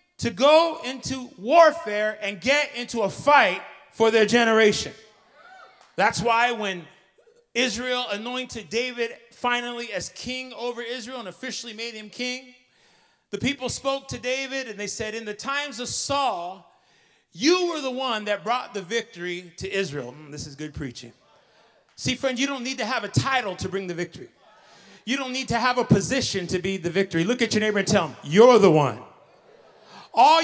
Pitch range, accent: 195-265 Hz, American